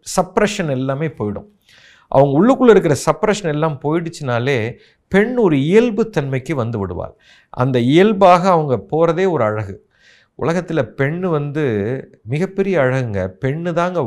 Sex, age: male, 50-69